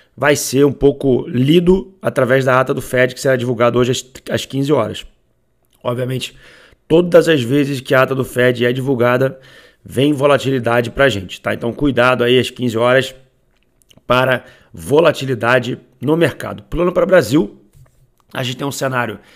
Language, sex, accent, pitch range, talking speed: Portuguese, male, Brazilian, 120-140 Hz, 160 wpm